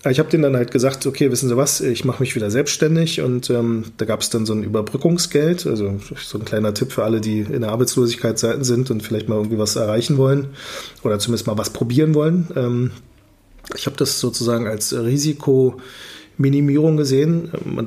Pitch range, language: 115-140 Hz, German